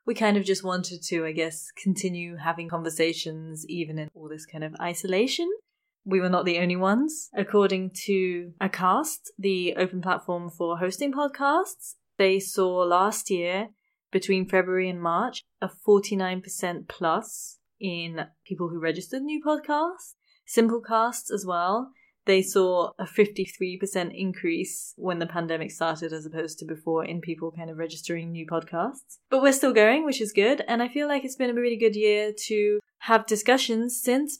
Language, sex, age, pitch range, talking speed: English, female, 20-39, 180-225 Hz, 165 wpm